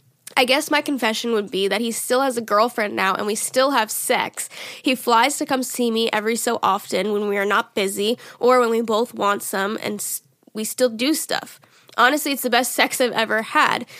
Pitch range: 205-240 Hz